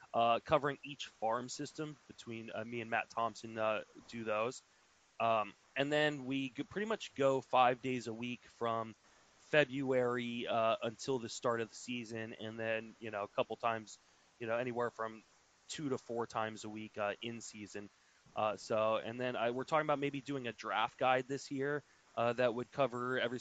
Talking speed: 190 wpm